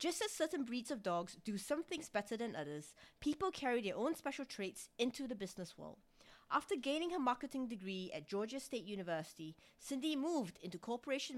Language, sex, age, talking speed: English, female, 30-49, 185 wpm